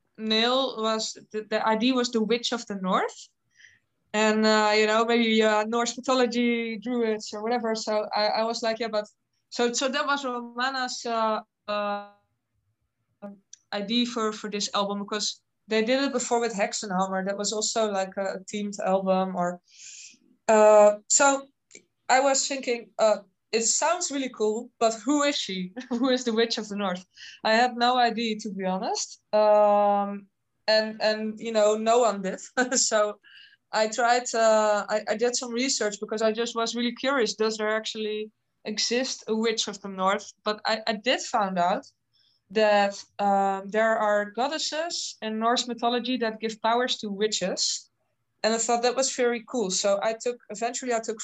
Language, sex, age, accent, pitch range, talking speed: English, female, 20-39, Dutch, 210-240 Hz, 175 wpm